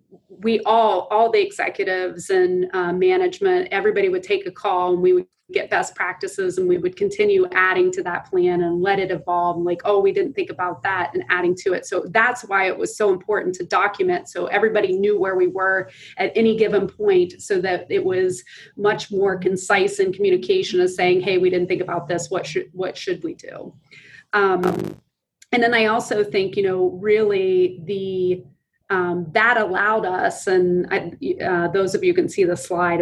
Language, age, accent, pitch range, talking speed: English, 30-49, American, 180-225 Hz, 195 wpm